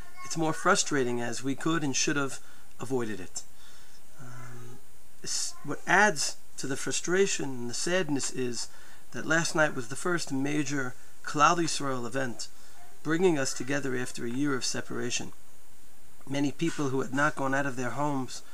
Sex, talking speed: male, 160 wpm